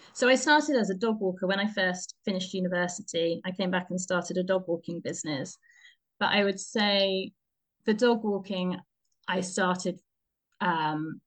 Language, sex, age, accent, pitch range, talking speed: English, female, 30-49, British, 180-205 Hz, 165 wpm